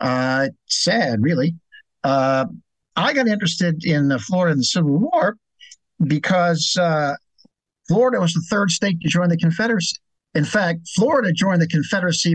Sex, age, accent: male, 50-69, American